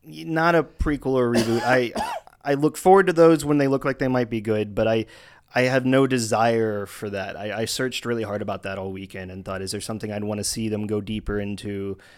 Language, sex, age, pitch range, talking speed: English, male, 20-39, 110-135 Hz, 245 wpm